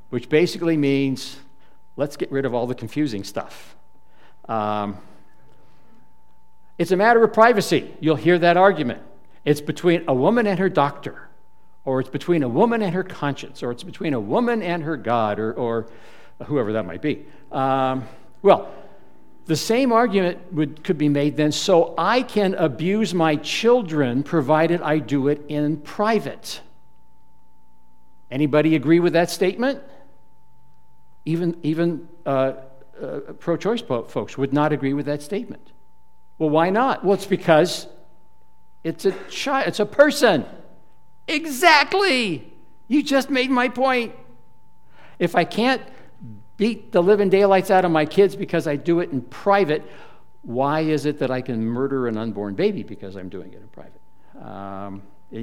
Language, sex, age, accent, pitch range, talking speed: English, male, 60-79, American, 130-195 Hz, 155 wpm